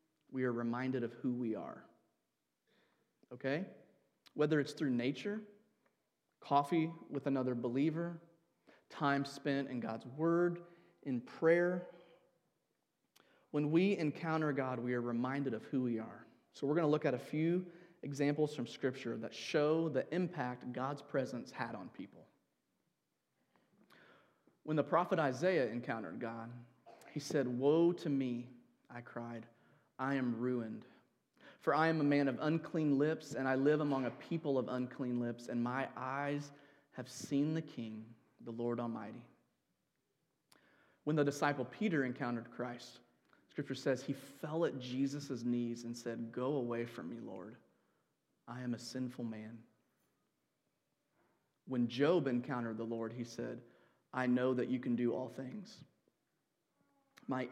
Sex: male